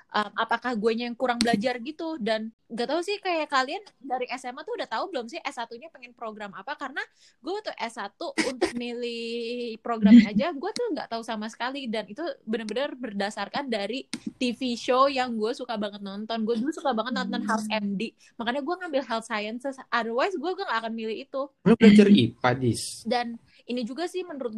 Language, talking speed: Indonesian, 180 wpm